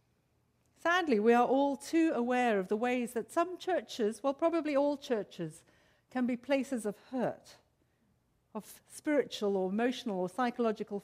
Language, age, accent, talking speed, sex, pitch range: English, 50-69, British, 145 wpm, female, 215-290 Hz